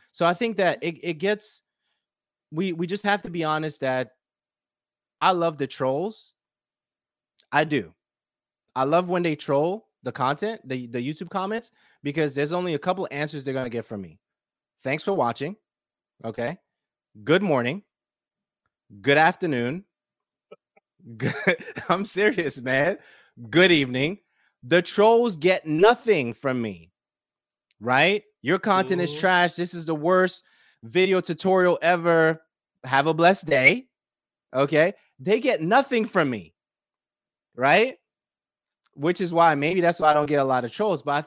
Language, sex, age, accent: English, male, 30-49, American